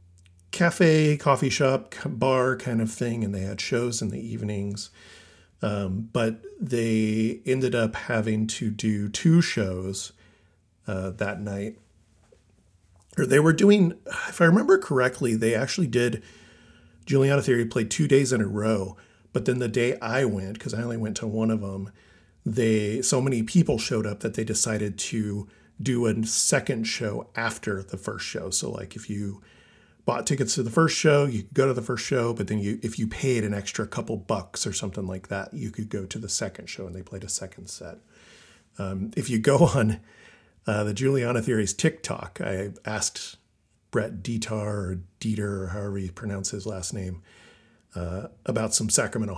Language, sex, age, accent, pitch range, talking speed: English, male, 40-59, American, 100-130 Hz, 180 wpm